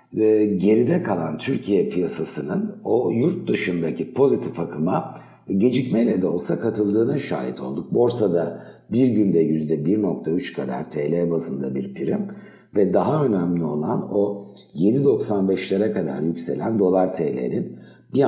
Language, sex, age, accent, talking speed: Turkish, male, 60-79, native, 115 wpm